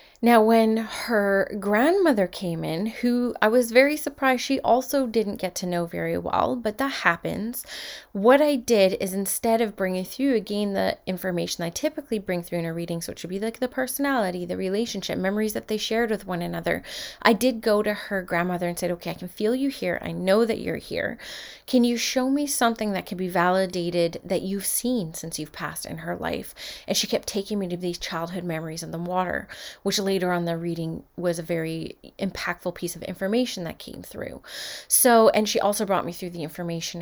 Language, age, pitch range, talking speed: English, 20-39, 175-225 Hz, 210 wpm